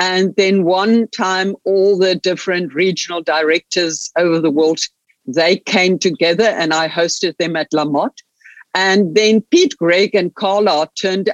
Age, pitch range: 70-89, 160-195 Hz